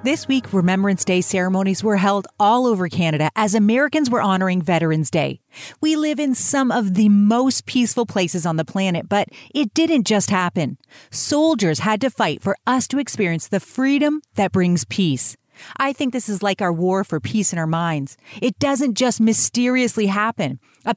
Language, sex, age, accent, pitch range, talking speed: English, female, 40-59, American, 175-245 Hz, 185 wpm